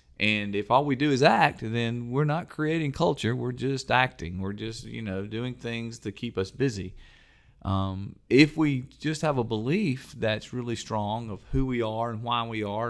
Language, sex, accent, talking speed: English, male, American, 200 wpm